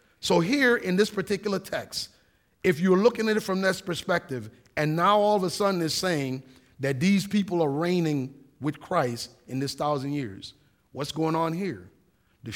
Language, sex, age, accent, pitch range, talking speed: English, male, 40-59, American, 140-200 Hz, 180 wpm